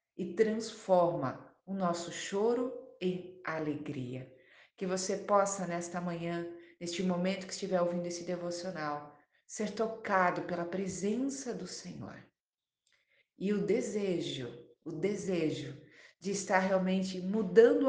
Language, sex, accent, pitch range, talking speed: Portuguese, female, Brazilian, 170-210 Hz, 115 wpm